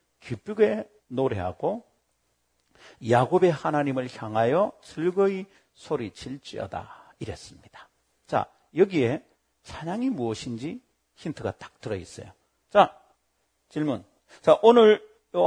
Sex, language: male, Korean